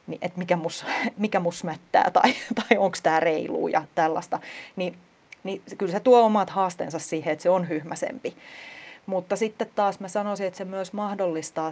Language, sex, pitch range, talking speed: Finnish, female, 165-215 Hz, 175 wpm